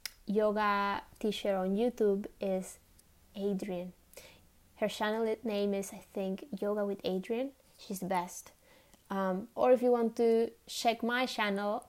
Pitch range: 185-225 Hz